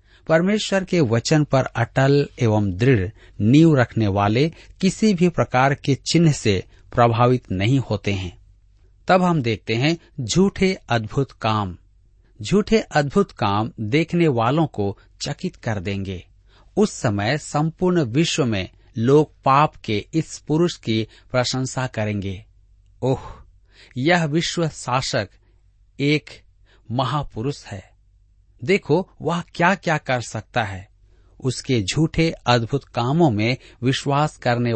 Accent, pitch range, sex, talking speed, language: native, 105-150 Hz, male, 120 wpm, Hindi